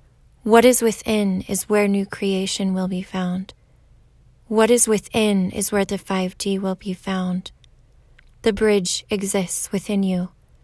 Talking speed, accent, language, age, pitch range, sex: 140 wpm, American, English, 20-39, 185-205 Hz, female